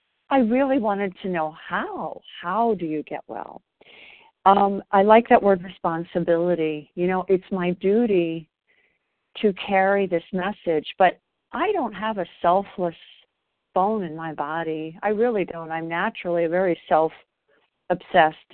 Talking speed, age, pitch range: 140 wpm, 50-69, 165-210 Hz